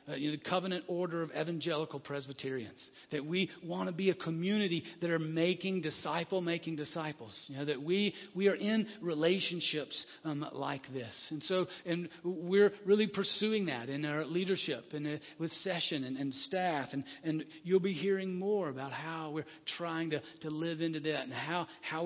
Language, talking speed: English, 180 wpm